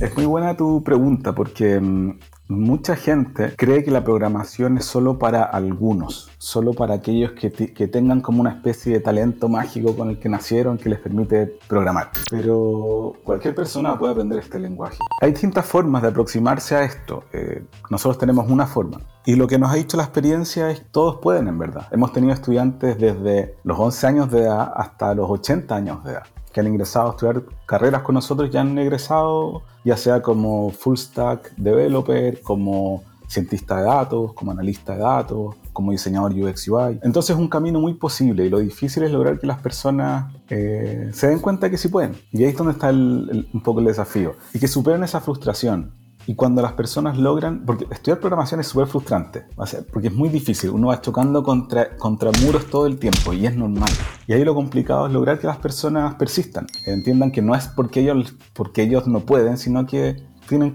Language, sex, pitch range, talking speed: Spanish, male, 105-135 Hz, 195 wpm